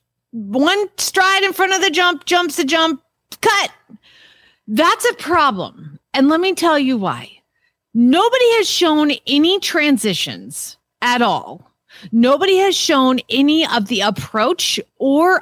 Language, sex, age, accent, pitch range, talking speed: English, female, 40-59, American, 230-320 Hz, 135 wpm